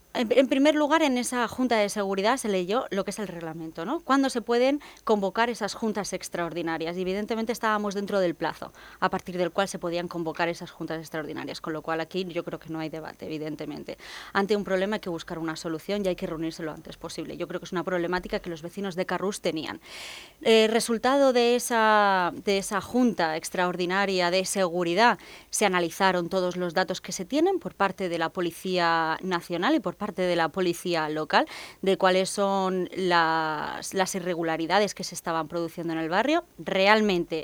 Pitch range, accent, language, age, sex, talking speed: 170-210 Hz, Spanish, Spanish, 20-39, female, 195 wpm